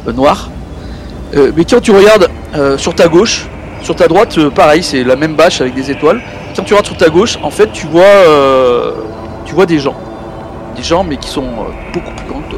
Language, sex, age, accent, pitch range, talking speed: English, male, 50-69, French, 110-175 Hz, 230 wpm